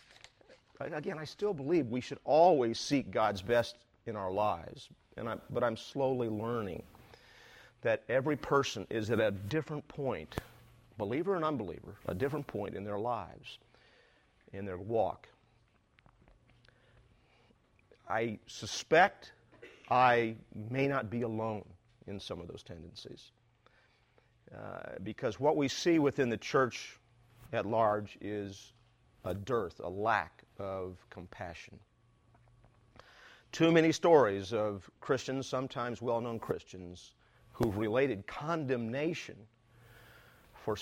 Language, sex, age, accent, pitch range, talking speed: English, male, 50-69, American, 110-135 Hz, 115 wpm